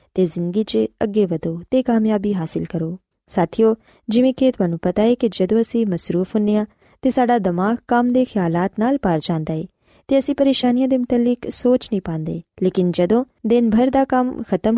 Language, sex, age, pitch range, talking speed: Punjabi, female, 20-39, 180-245 Hz, 185 wpm